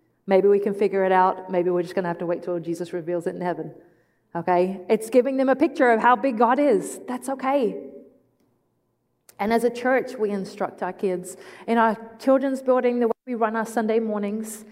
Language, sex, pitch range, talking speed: English, female, 190-225 Hz, 210 wpm